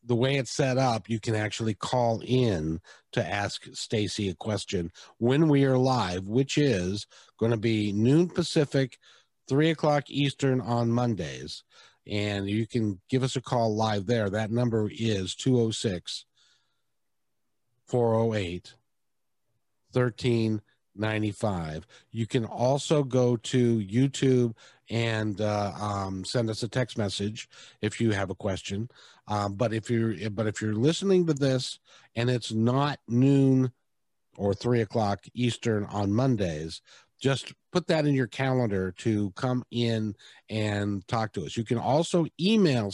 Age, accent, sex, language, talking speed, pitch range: 50-69, American, male, English, 145 wpm, 105-130 Hz